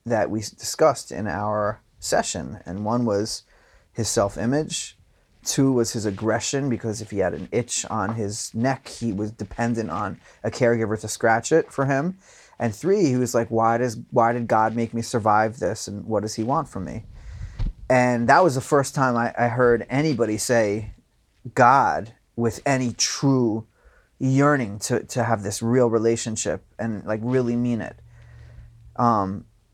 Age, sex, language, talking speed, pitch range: 30-49, male, English, 170 wpm, 110-125 Hz